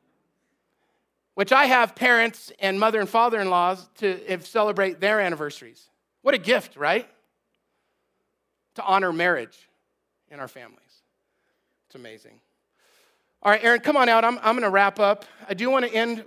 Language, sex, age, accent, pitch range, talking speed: English, male, 40-59, American, 170-215 Hz, 145 wpm